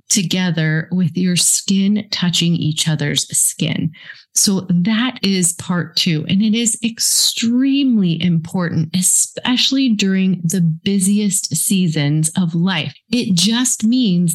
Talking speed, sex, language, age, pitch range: 115 wpm, female, English, 30-49, 170-215 Hz